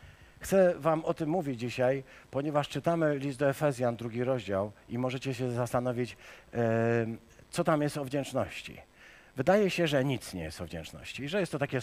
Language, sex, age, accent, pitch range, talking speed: Polish, male, 50-69, native, 105-135 Hz, 180 wpm